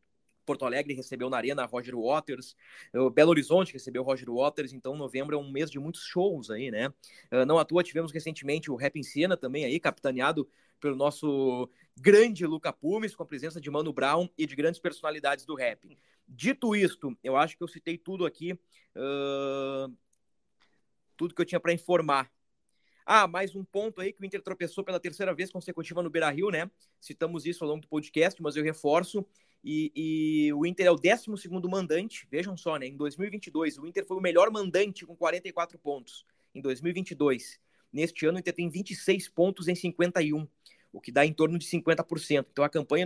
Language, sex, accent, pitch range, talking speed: Portuguese, male, Brazilian, 145-180 Hz, 185 wpm